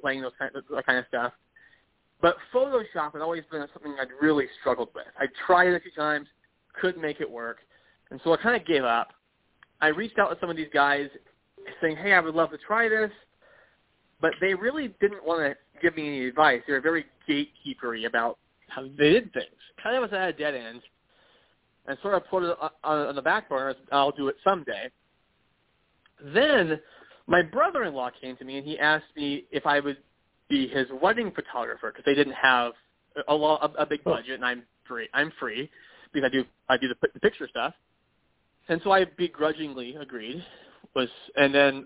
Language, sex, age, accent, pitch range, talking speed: English, male, 30-49, American, 135-170 Hz, 200 wpm